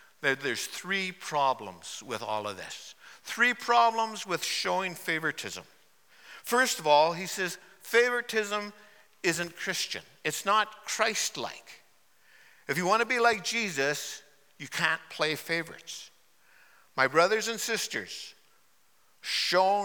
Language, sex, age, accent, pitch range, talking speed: English, male, 60-79, American, 145-195 Hz, 120 wpm